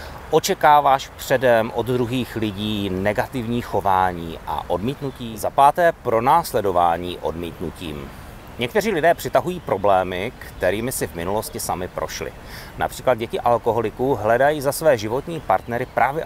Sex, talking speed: male, 120 wpm